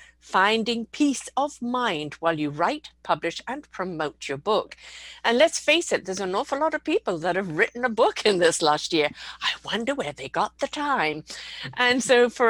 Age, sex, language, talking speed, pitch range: 50-69, female, English, 195 wpm, 160-225 Hz